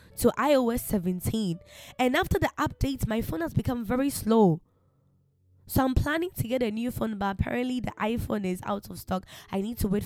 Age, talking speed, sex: 10-29, 195 wpm, female